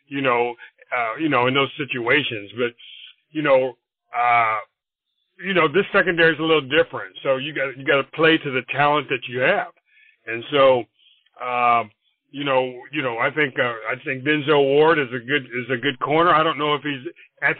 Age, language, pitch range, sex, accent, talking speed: 40-59, English, 130-155 Hz, male, American, 200 wpm